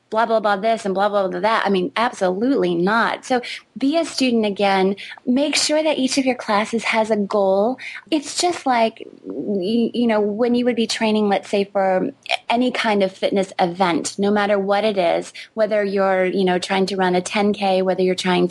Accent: American